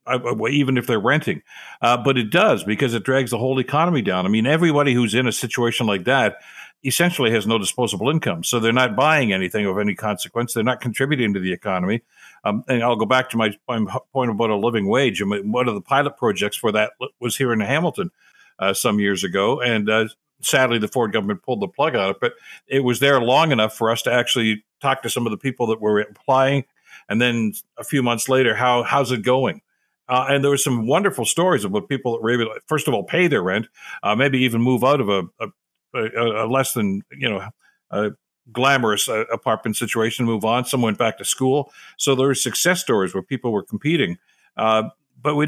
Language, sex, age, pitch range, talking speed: English, male, 60-79, 110-135 Hz, 220 wpm